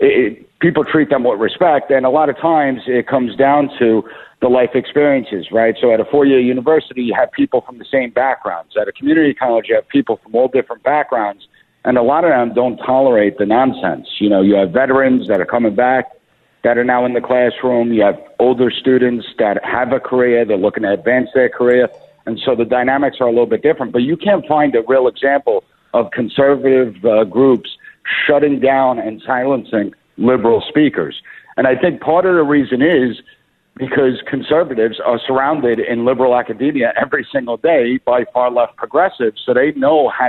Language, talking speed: English, 195 wpm